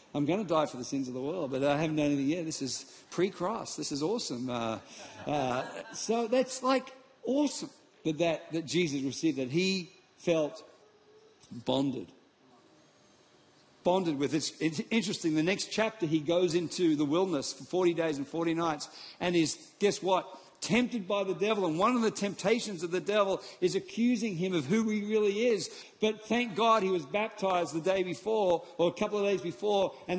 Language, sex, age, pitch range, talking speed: English, male, 50-69, 165-225 Hz, 190 wpm